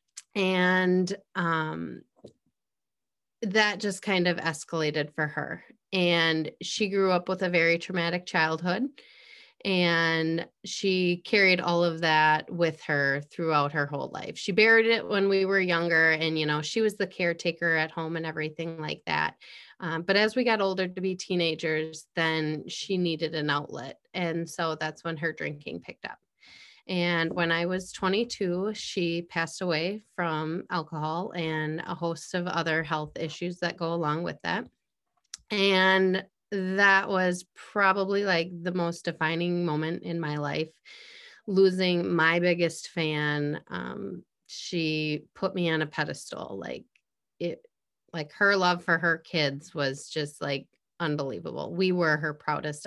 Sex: female